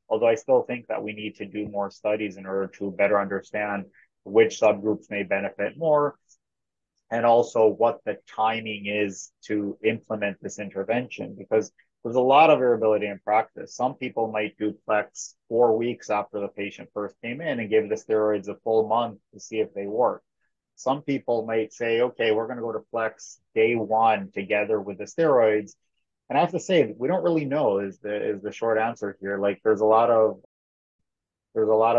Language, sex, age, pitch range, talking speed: English, male, 30-49, 105-115 Hz, 195 wpm